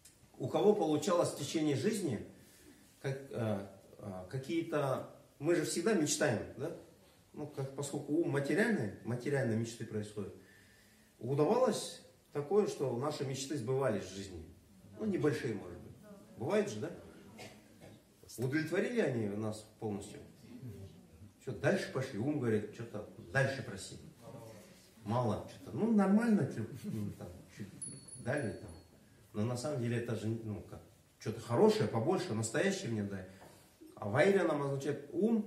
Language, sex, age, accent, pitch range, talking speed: Russian, male, 40-59, native, 105-160 Hz, 130 wpm